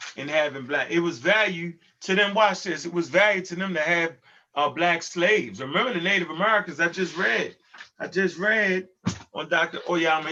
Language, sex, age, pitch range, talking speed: English, male, 30-49, 170-225 Hz, 190 wpm